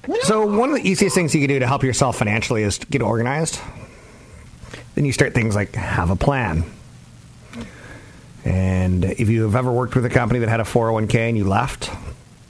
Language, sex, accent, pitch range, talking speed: English, male, American, 95-120 Hz, 195 wpm